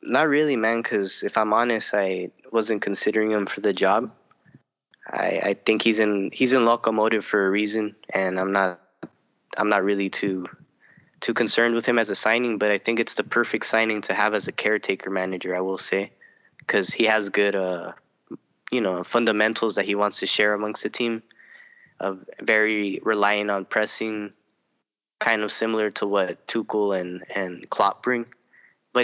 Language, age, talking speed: English, 10-29, 180 wpm